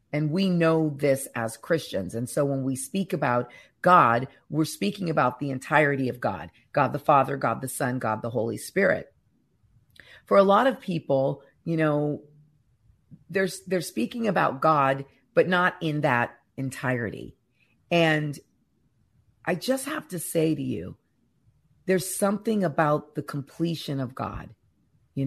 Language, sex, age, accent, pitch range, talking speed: English, female, 40-59, American, 130-160 Hz, 150 wpm